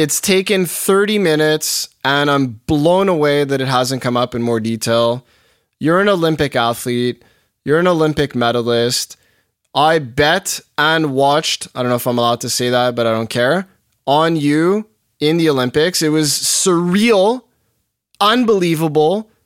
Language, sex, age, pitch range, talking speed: English, male, 20-39, 140-190 Hz, 155 wpm